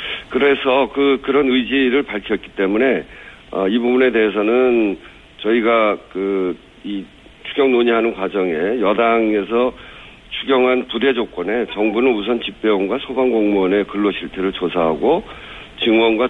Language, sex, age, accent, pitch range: Korean, male, 50-69, native, 95-125 Hz